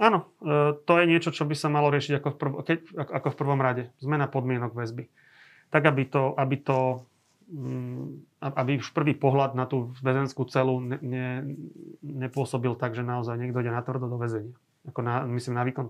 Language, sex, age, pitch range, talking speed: Slovak, male, 30-49, 120-140 Hz, 185 wpm